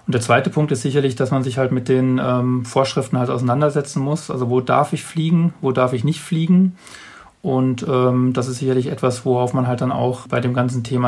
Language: German